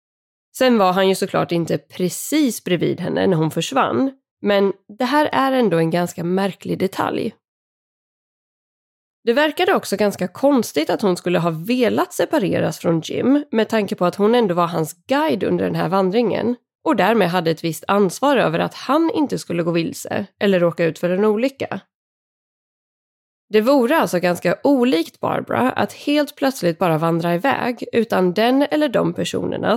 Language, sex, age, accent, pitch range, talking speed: Swedish, female, 20-39, native, 175-260 Hz, 165 wpm